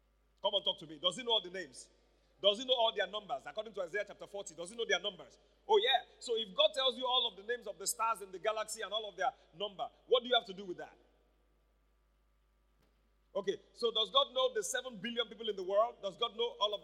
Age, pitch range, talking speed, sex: 30-49, 205-310 Hz, 265 wpm, male